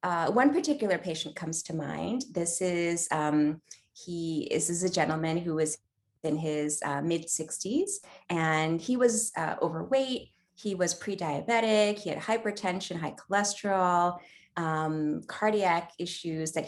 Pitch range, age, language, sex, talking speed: 155-210 Hz, 20-39, English, female, 145 wpm